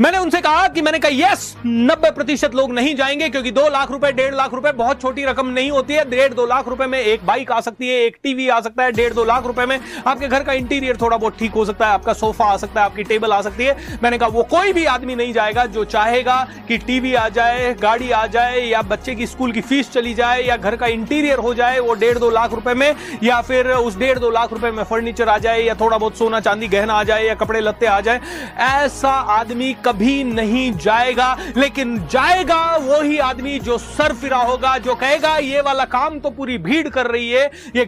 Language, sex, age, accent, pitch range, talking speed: Hindi, male, 30-49, native, 230-275 Hz, 240 wpm